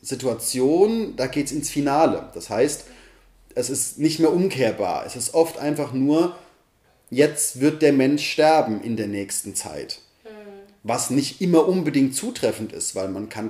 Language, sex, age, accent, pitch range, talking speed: German, male, 30-49, German, 115-150 Hz, 160 wpm